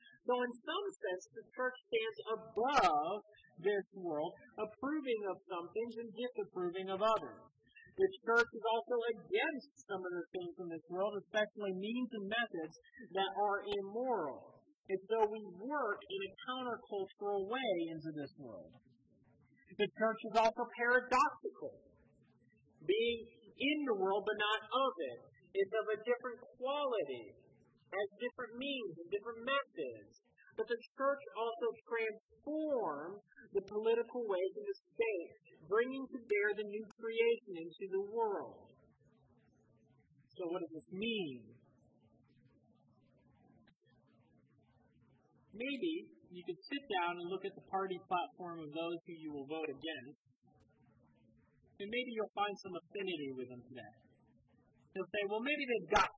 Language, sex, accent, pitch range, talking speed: English, male, American, 185-265 Hz, 140 wpm